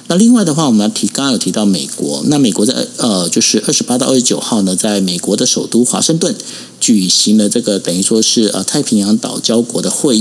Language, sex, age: Chinese, male, 50-69